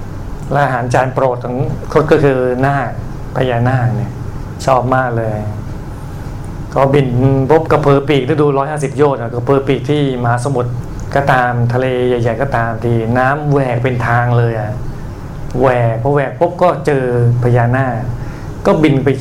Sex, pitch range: male, 120-140 Hz